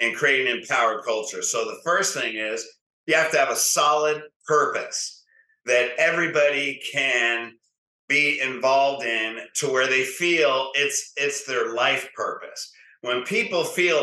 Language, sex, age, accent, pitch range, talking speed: English, male, 50-69, American, 130-215 Hz, 150 wpm